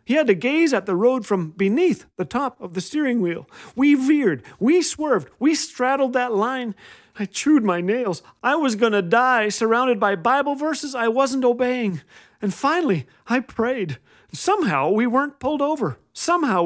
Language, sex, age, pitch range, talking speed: English, male, 40-59, 155-240 Hz, 175 wpm